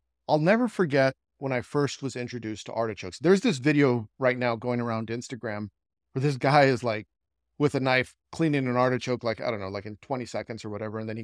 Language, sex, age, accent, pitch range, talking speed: English, male, 40-59, American, 110-135 Hz, 225 wpm